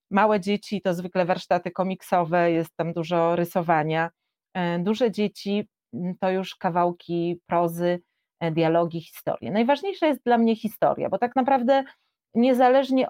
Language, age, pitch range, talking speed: Polish, 30-49, 185-235 Hz, 125 wpm